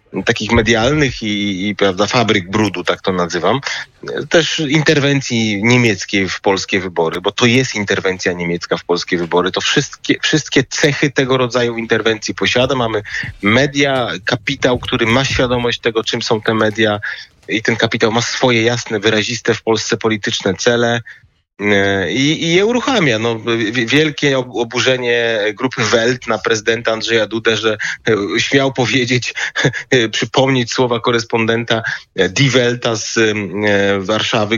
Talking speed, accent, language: 135 wpm, native, Polish